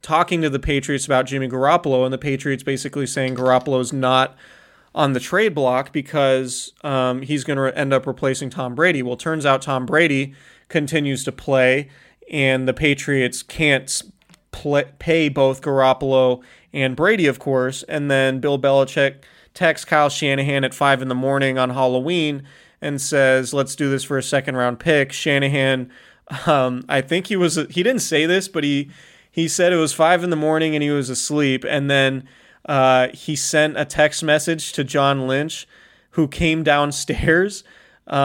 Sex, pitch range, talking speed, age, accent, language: male, 130-150 Hz, 175 wpm, 30-49, American, English